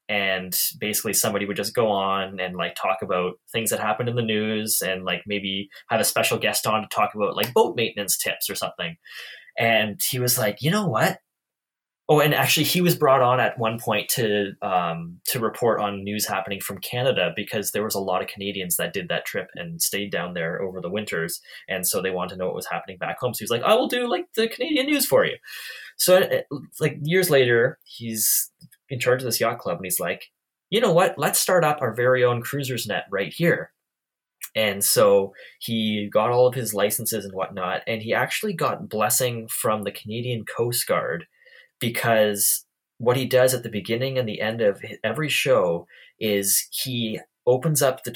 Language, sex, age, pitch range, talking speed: English, male, 20-39, 105-140 Hz, 210 wpm